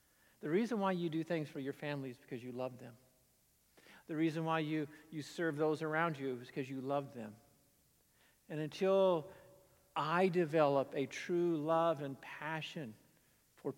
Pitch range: 145-205 Hz